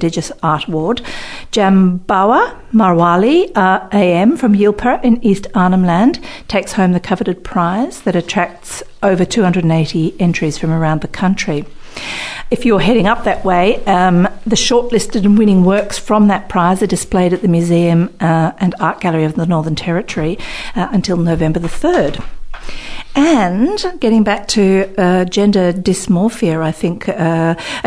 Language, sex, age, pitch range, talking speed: English, female, 50-69, 170-210 Hz, 150 wpm